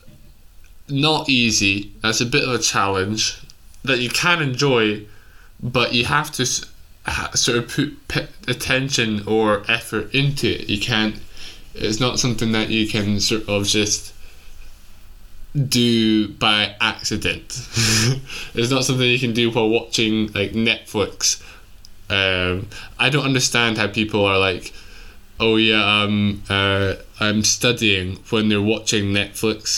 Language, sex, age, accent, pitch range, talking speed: English, male, 20-39, British, 100-115 Hz, 135 wpm